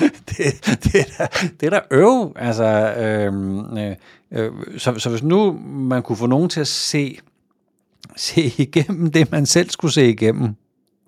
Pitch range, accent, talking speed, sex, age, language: 110-155 Hz, native, 170 wpm, male, 50-69, Danish